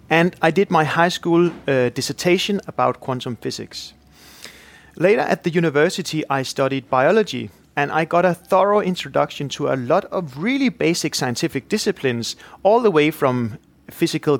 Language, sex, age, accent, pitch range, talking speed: English, male, 30-49, Danish, 135-175 Hz, 155 wpm